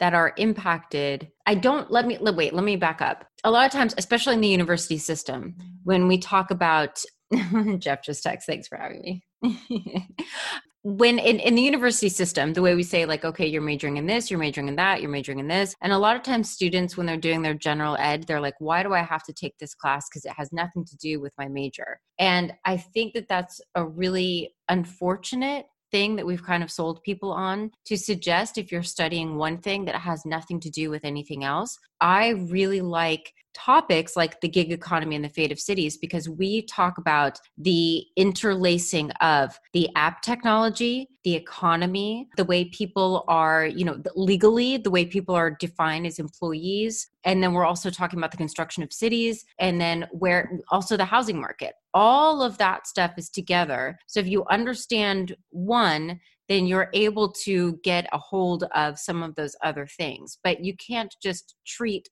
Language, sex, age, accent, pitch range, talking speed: English, female, 30-49, American, 160-200 Hz, 195 wpm